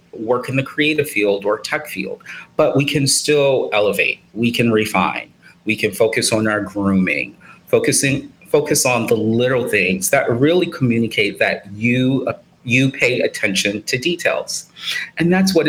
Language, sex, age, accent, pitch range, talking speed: English, male, 30-49, American, 100-130 Hz, 155 wpm